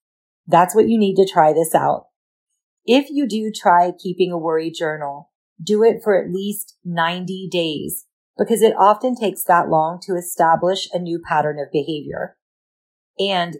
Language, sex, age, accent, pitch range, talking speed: English, female, 40-59, American, 165-195 Hz, 165 wpm